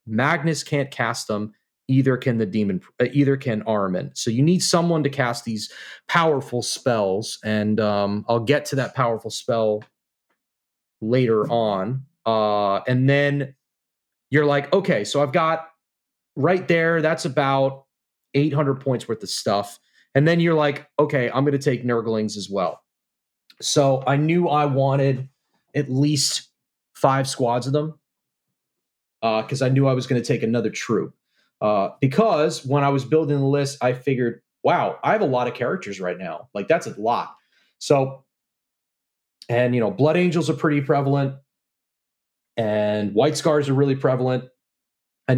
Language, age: English, 30-49